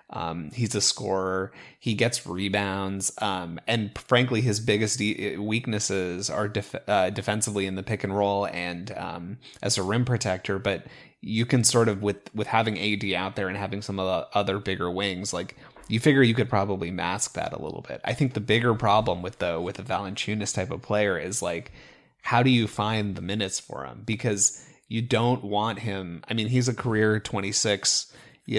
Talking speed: 200 wpm